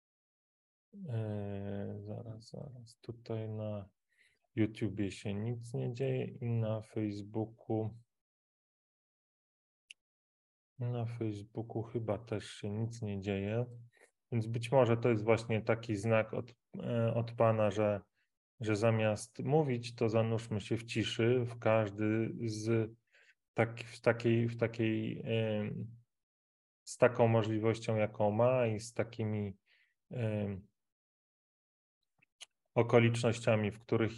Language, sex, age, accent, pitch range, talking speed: Polish, male, 20-39, native, 110-125 Hz, 110 wpm